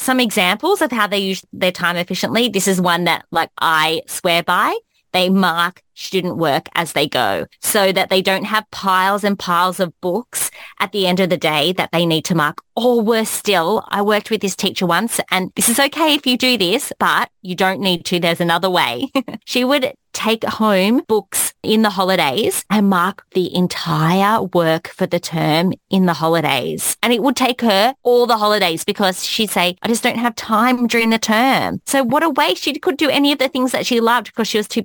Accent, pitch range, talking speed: Australian, 185-245 Hz, 215 wpm